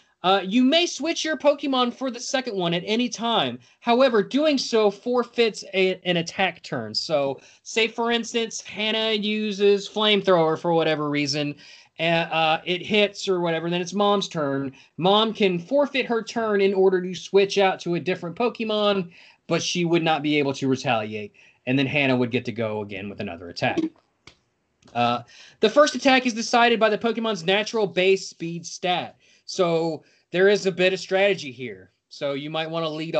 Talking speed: 180 wpm